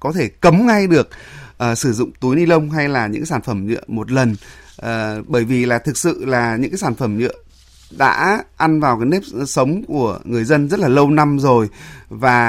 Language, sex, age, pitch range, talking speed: Vietnamese, male, 20-39, 115-155 Hz, 210 wpm